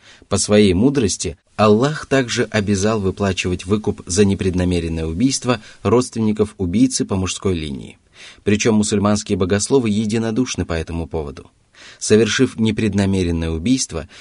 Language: Russian